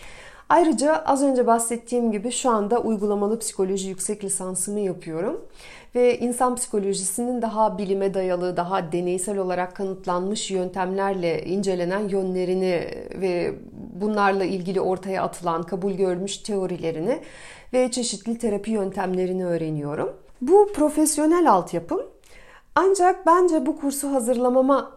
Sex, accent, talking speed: female, native, 110 wpm